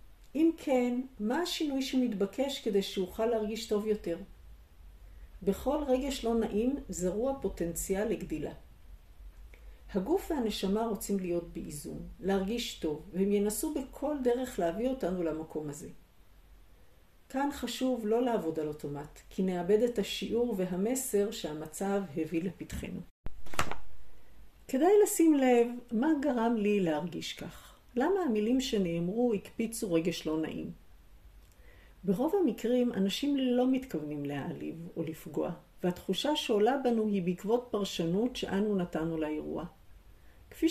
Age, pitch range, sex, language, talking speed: 50-69, 170-245 Hz, female, Hebrew, 115 wpm